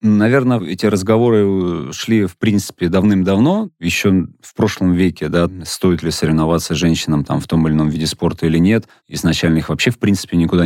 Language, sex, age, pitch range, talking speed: Russian, male, 30-49, 90-105 Hz, 175 wpm